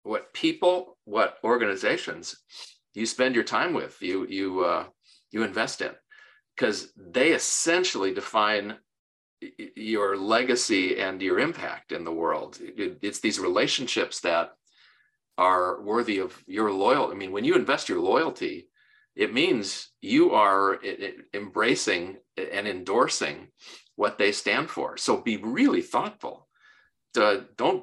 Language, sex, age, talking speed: English, male, 50-69, 130 wpm